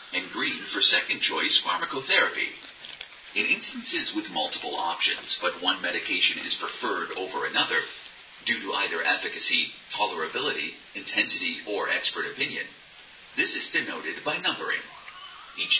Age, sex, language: 40-59, male, English